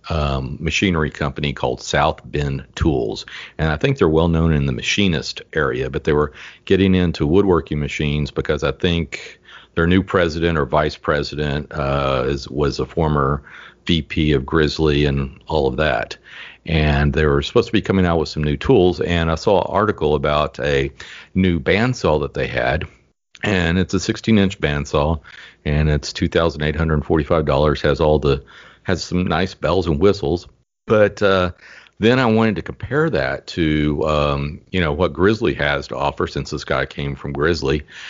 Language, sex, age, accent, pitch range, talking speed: English, male, 50-69, American, 75-90 Hz, 170 wpm